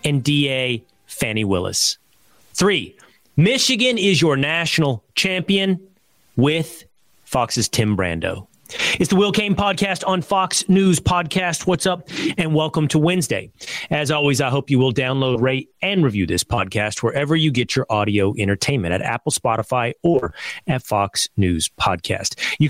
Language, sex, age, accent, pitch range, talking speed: English, male, 30-49, American, 115-170 Hz, 150 wpm